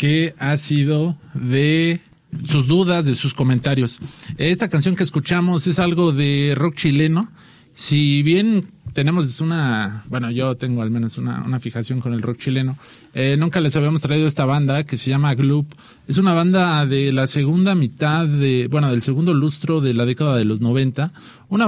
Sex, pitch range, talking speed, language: male, 130-165 Hz, 175 wpm, English